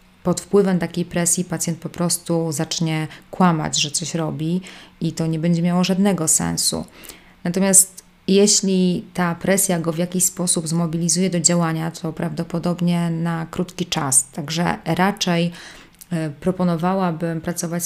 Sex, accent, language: female, native, Polish